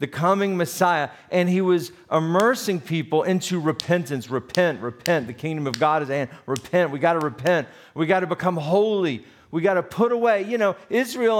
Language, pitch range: English, 140-185 Hz